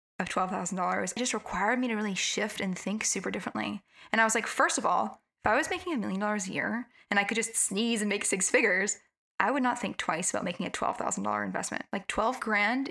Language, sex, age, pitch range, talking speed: English, female, 10-29, 195-245 Hz, 230 wpm